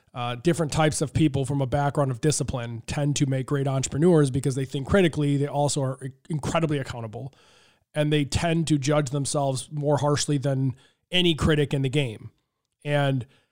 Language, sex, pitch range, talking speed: English, male, 135-155 Hz, 175 wpm